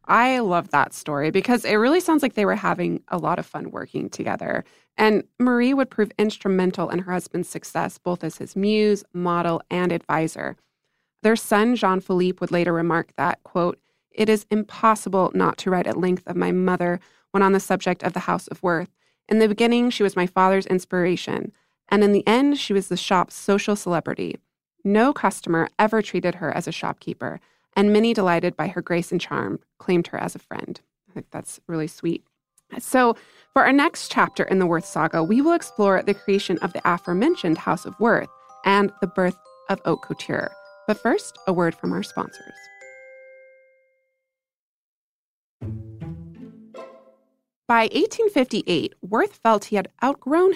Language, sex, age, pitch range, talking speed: English, female, 20-39, 175-225 Hz, 175 wpm